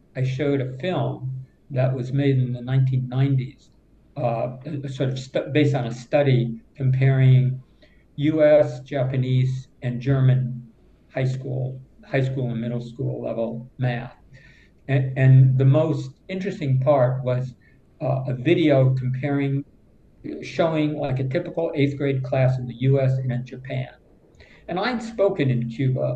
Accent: American